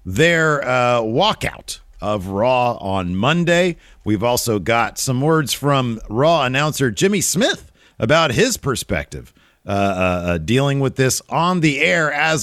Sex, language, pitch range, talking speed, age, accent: male, English, 110-165 Hz, 145 wpm, 40-59, American